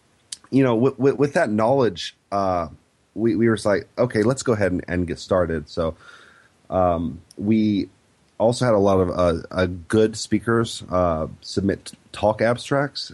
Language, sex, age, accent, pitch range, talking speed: English, male, 30-49, American, 90-110 Hz, 170 wpm